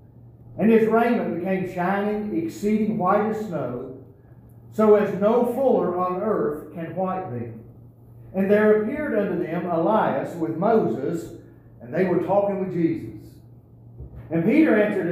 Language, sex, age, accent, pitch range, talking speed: English, male, 50-69, American, 135-215 Hz, 140 wpm